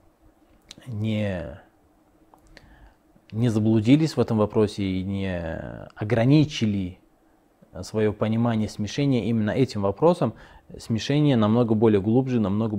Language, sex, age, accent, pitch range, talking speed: Russian, male, 20-39, native, 100-120 Hz, 95 wpm